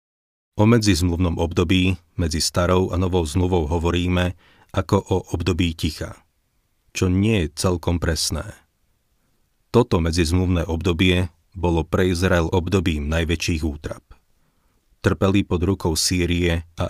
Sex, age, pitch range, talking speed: male, 30-49, 85-95 Hz, 115 wpm